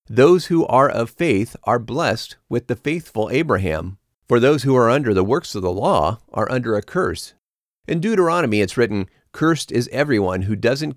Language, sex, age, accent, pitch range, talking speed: English, male, 40-59, American, 100-140 Hz, 185 wpm